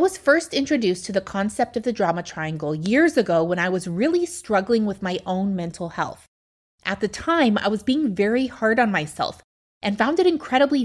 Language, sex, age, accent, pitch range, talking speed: English, female, 20-39, American, 190-245 Hz, 205 wpm